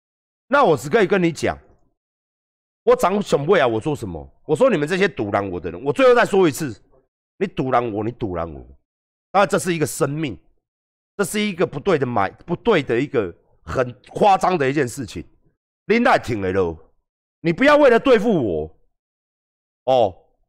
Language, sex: Chinese, male